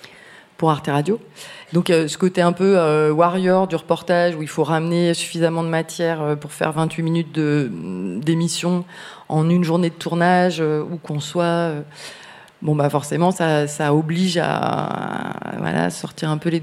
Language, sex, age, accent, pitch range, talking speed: French, female, 30-49, French, 150-180 Hz, 180 wpm